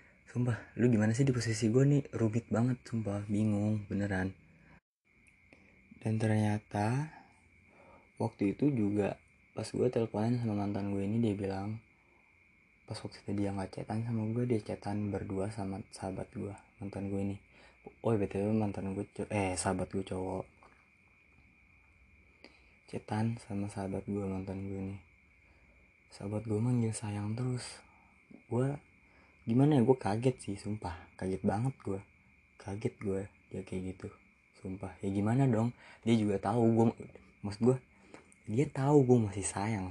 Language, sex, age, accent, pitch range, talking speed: Indonesian, male, 20-39, native, 95-115 Hz, 145 wpm